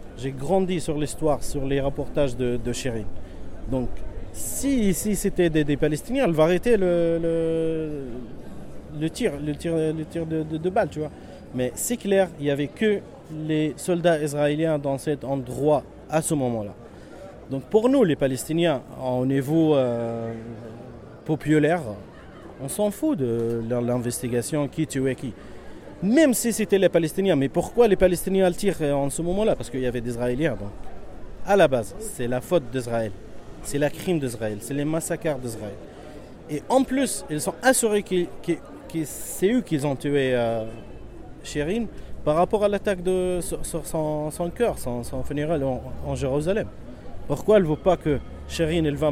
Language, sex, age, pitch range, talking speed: French, male, 40-59, 125-170 Hz, 175 wpm